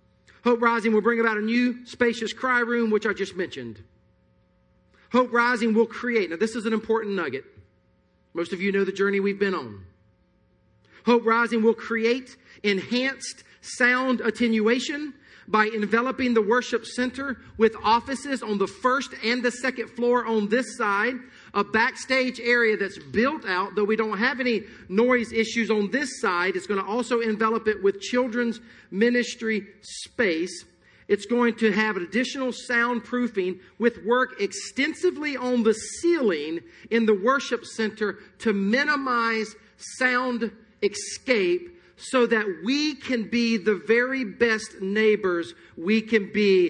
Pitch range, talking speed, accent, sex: 205-245 Hz, 150 wpm, American, male